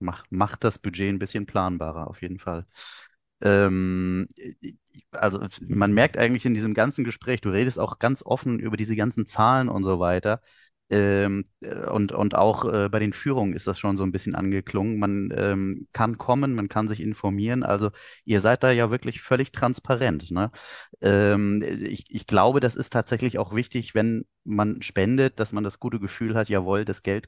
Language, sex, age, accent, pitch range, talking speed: German, male, 30-49, German, 85-105 Hz, 180 wpm